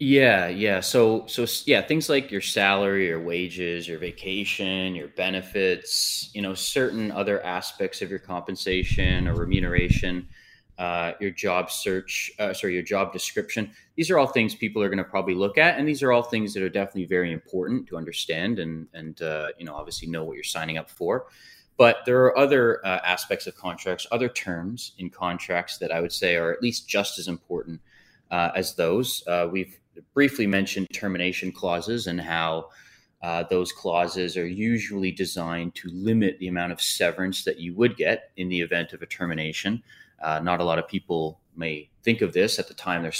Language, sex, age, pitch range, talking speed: English, male, 20-39, 85-100 Hz, 190 wpm